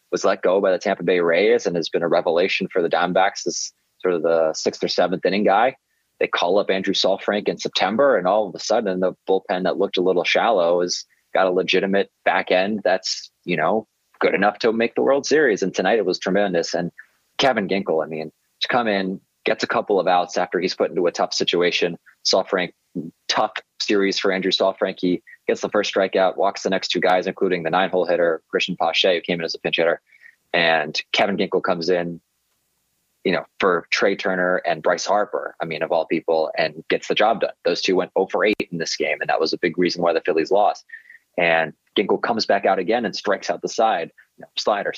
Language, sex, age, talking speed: English, male, 20-39, 225 wpm